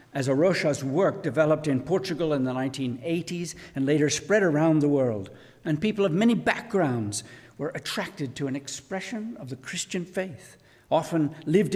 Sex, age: male, 60-79